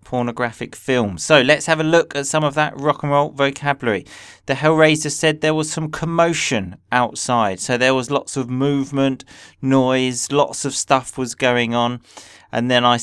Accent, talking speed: British, 180 wpm